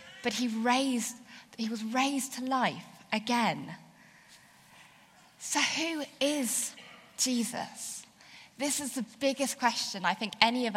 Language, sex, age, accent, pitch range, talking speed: English, female, 10-29, British, 205-255 Hz, 125 wpm